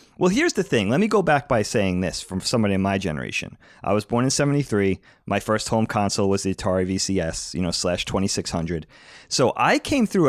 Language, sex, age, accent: English, male, 30-49, American